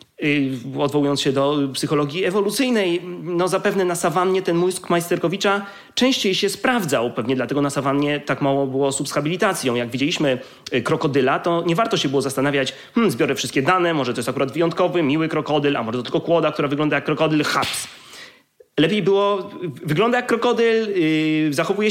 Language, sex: Polish, male